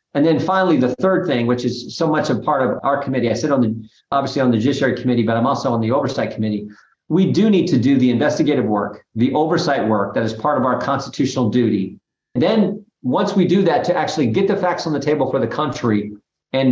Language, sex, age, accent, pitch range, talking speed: English, male, 50-69, American, 135-170 Hz, 240 wpm